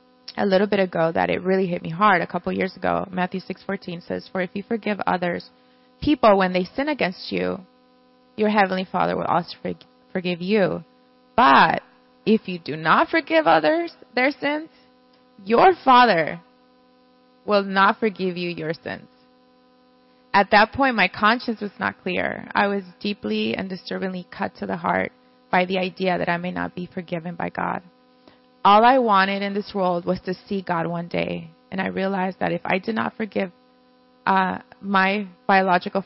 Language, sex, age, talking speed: English, female, 20-39, 175 wpm